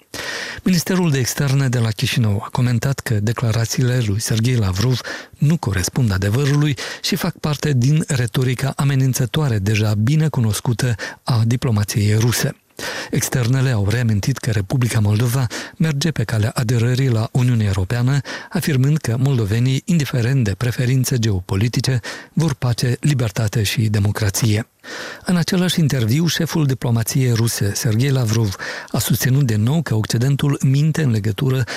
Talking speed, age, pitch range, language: 130 wpm, 50-69, 110-140 Hz, Romanian